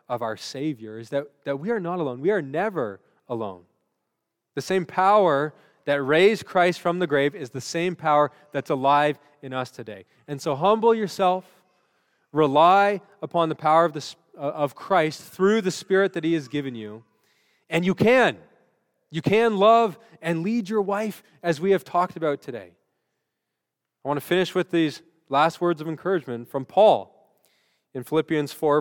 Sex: male